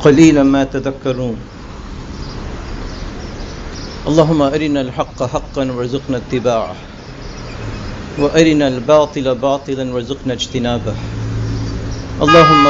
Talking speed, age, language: 70 wpm, 50-69, English